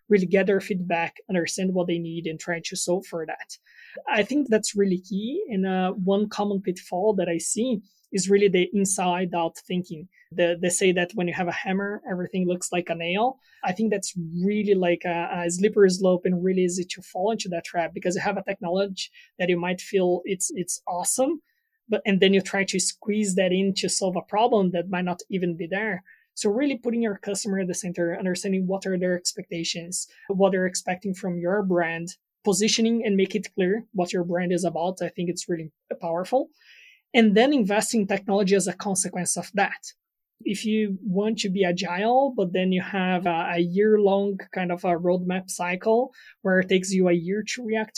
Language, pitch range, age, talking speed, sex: English, 180-210 Hz, 20-39, 205 wpm, male